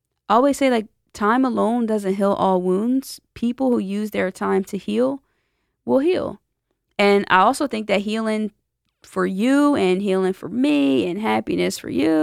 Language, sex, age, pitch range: English, female, 20-39, 185-255 Hz